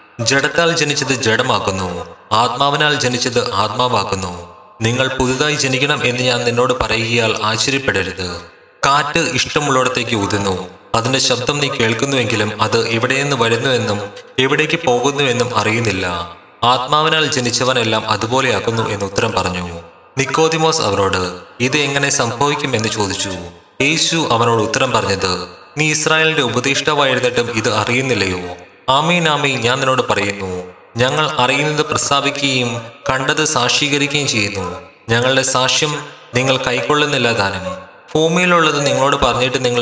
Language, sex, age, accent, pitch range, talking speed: Malayalam, male, 30-49, native, 110-140 Hz, 100 wpm